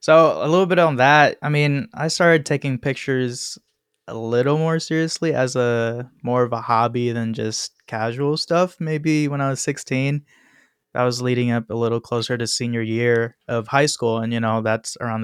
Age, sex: 20-39, male